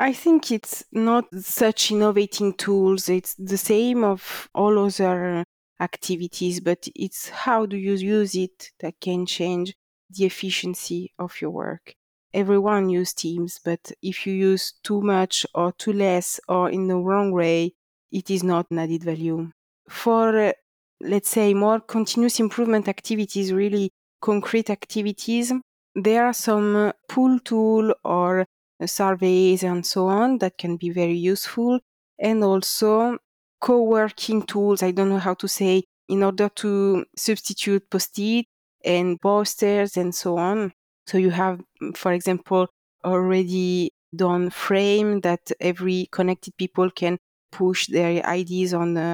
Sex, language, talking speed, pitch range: female, English, 140 wpm, 180-210 Hz